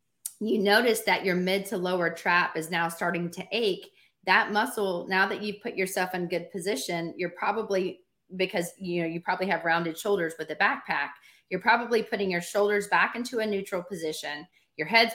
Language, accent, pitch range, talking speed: English, American, 170-205 Hz, 190 wpm